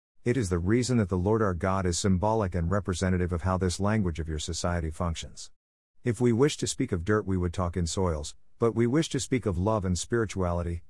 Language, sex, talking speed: English, male, 230 wpm